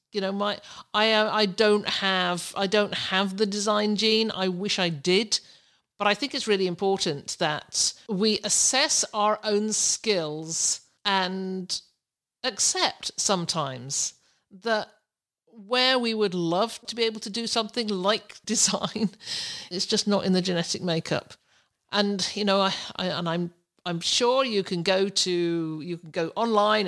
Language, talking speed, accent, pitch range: English, 155 wpm, British, 165-210 Hz